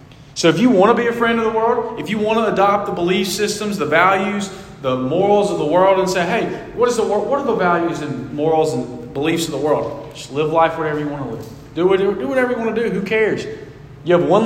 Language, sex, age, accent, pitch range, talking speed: English, male, 40-59, American, 145-210 Hz, 260 wpm